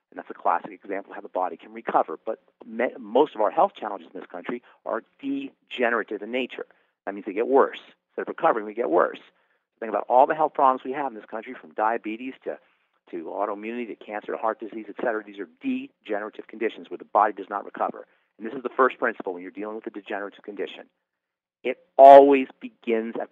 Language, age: English, 50-69